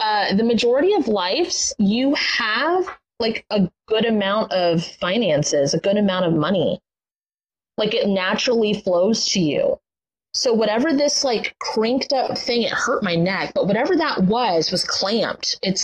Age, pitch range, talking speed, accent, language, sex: 30-49, 190-255 Hz, 160 wpm, American, English, female